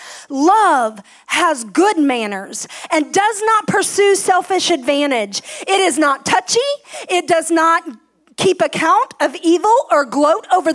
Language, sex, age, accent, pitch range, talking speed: English, female, 40-59, American, 250-385 Hz, 135 wpm